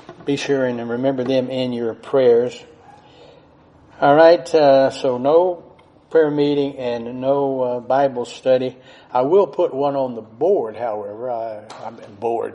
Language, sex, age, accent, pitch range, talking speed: English, male, 60-79, American, 120-140 Hz, 150 wpm